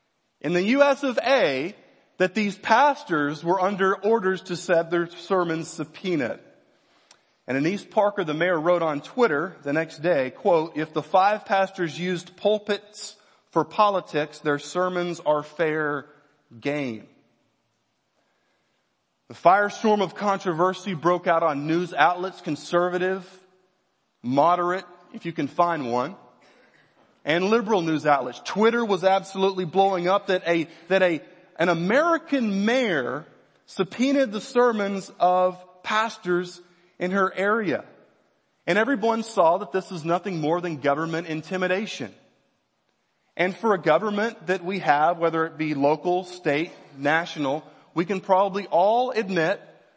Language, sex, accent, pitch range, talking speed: English, male, American, 165-200 Hz, 135 wpm